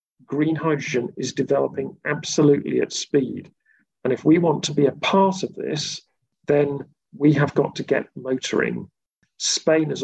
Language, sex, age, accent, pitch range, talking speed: English, male, 40-59, British, 125-150 Hz, 155 wpm